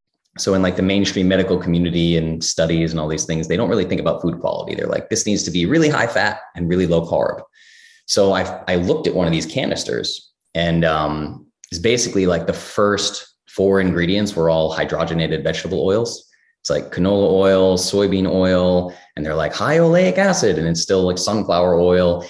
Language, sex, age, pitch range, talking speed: English, male, 20-39, 85-100 Hz, 200 wpm